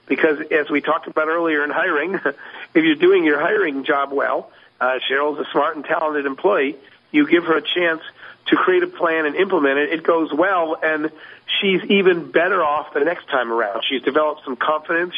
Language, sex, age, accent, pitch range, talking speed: English, male, 50-69, American, 145-190 Hz, 200 wpm